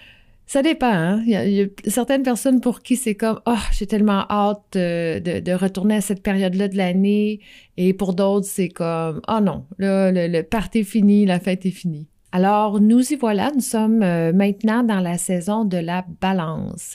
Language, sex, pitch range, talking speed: French, female, 180-215 Hz, 210 wpm